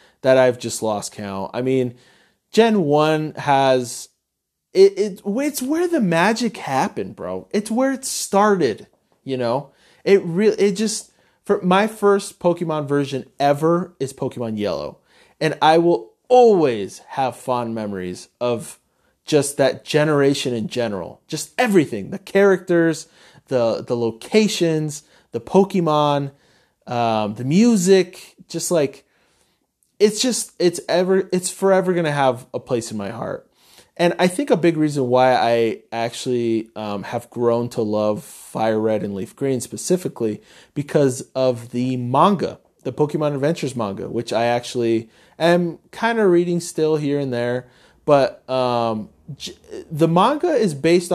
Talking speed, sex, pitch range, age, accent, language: 145 wpm, male, 120-180 Hz, 30-49, American, English